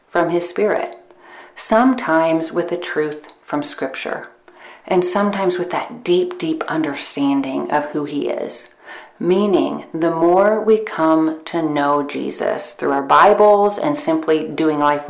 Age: 40-59